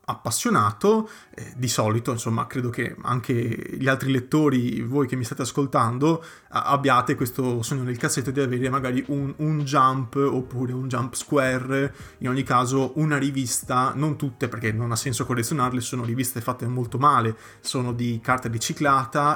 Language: Italian